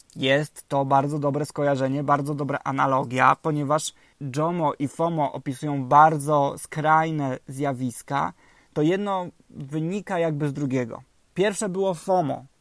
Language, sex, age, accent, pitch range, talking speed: Polish, male, 20-39, native, 140-160 Hz, 120 wpm